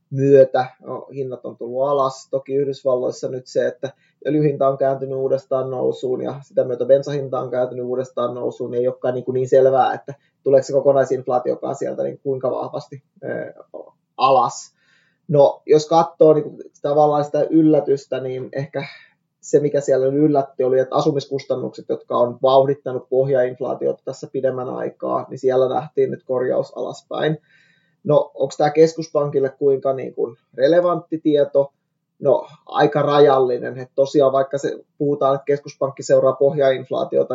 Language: Finnish